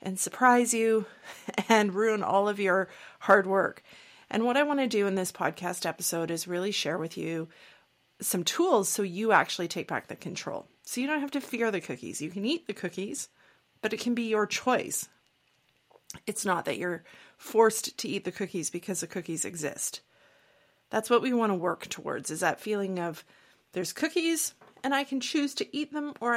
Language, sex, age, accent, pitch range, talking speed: English, female, 30-49, American, 180-225 Hz, 200 wpm